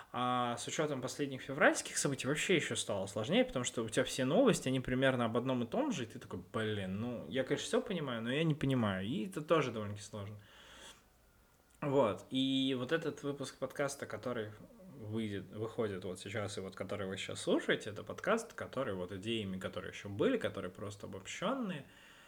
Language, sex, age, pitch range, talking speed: Russian, male, 20-39, 105-130 Hz, 185 wpm